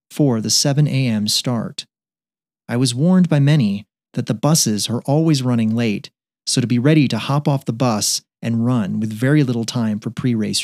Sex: male